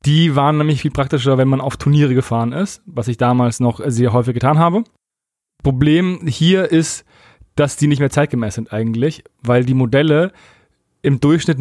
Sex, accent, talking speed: male, German, 175 wpm